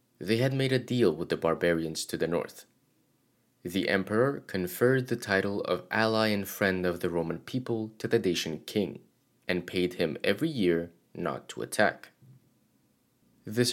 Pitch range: 90-125 Hz